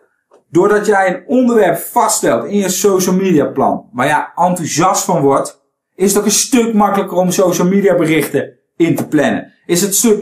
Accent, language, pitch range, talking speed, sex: Dutch, Dutch, 155-210 Hz, 190 wpm, male